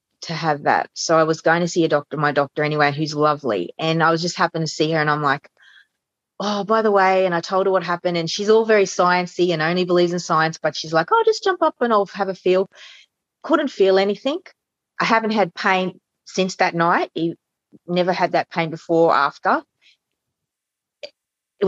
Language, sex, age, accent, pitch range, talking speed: English, female, 30-49, Australian, 160-195 Hz, 210 wpm